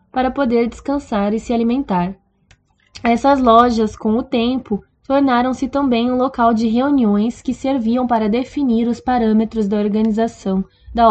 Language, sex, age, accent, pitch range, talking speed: Portuguese, female, 10-29, Brazilian, 215-260 Hz, 140 wpm